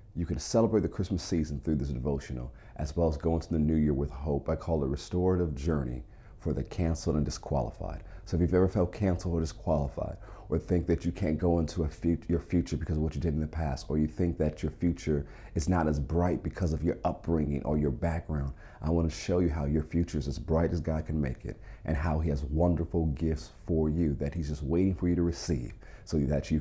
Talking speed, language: 245 wpm, English